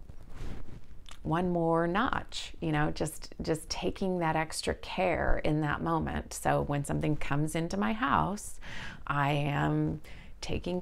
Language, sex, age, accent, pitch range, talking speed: English, female, 30-49, American, 140-170 Hz, 135 wpm